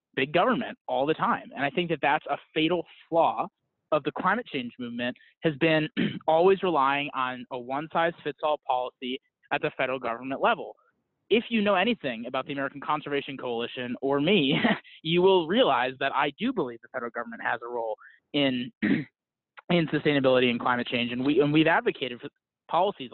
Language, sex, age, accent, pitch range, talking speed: English, male, 20-39, American, 130-165 Hz, 185 wpm